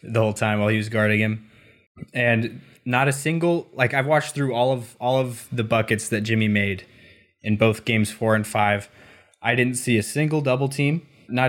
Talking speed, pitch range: 205 wpm, 110-125 Hz